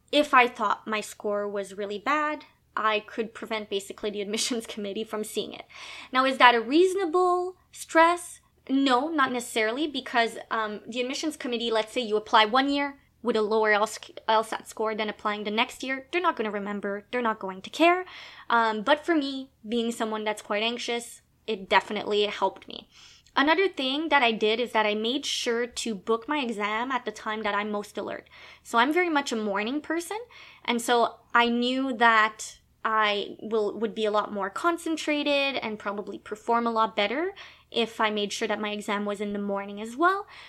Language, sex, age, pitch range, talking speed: English, female, 20-39, 210-265 Hz, 195 wpm